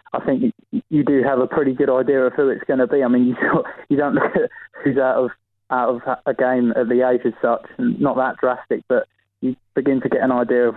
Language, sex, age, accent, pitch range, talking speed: English, male, 20-39, British, 120-130 Hz, 245 wpm